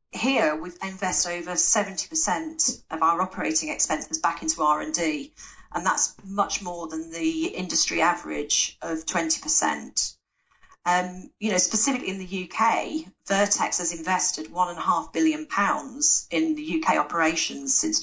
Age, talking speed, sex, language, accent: 40-59, 130 wpm, female, English, British